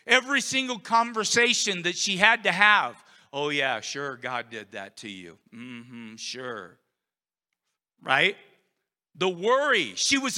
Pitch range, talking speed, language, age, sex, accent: 125-200 Hz, 135 wpm, English, 50-69, male, American